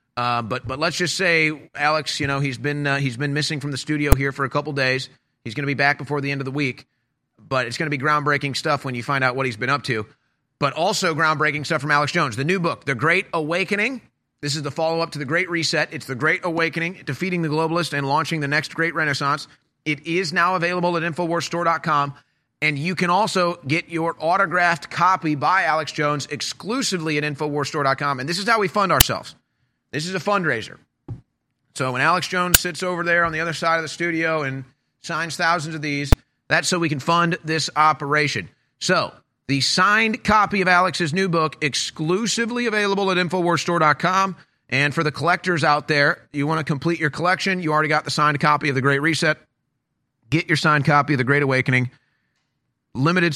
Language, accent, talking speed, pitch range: English, American, 210 wpm, 140-170 Hz